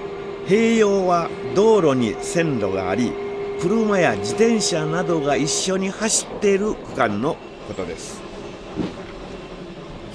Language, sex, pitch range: Japanese, male, 145-210 Hz